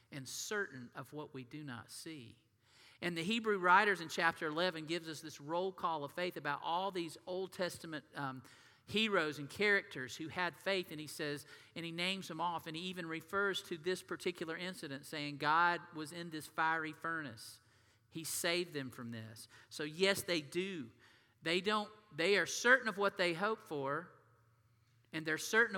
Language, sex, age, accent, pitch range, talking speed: English, male, 50-69, American, 120-170 Hz, 185 wpm